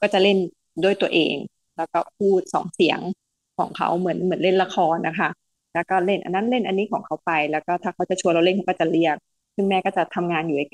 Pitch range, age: 175-215 Hz, 20-39